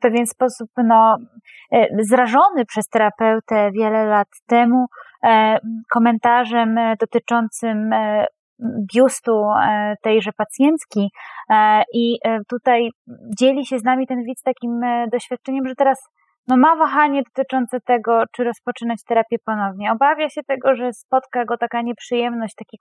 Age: 20-39